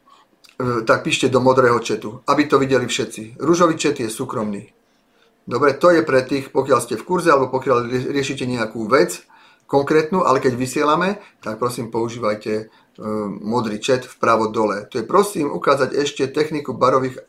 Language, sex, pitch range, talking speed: Slovak, male, 125-150 Hz, 155 wpm